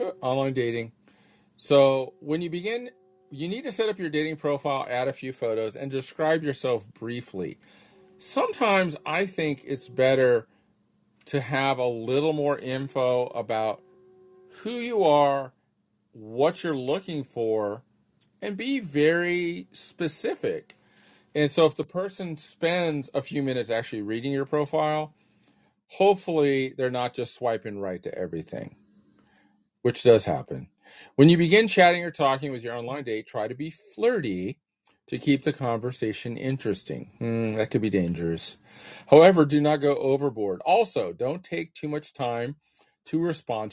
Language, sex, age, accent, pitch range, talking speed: English, male, 40-59, American, 125-165 Hz, 145 wpm